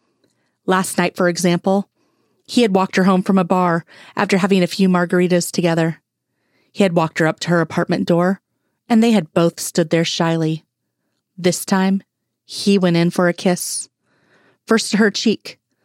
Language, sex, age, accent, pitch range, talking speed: English, female, 30-49, American, 170-205 Hz, 175 wpm